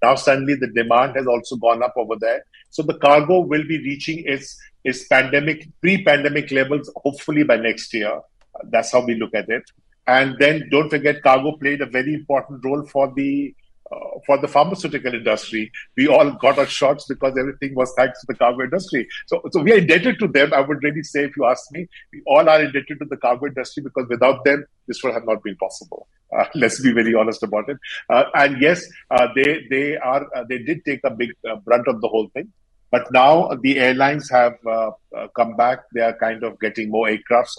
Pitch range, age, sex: 120-145 Hz, 50-69, male